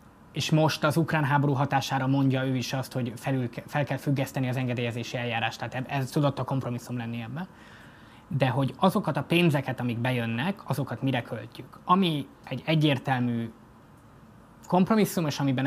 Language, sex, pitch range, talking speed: Hungarian, male, 120-145 Hz, 155 wpm